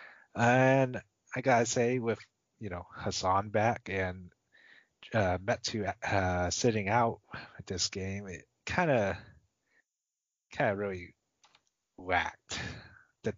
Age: 30-49